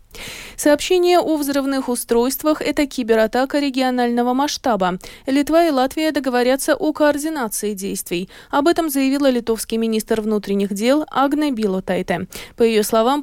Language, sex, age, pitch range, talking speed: Russian, female, 20-39, 225-295 Hz, 125 wpm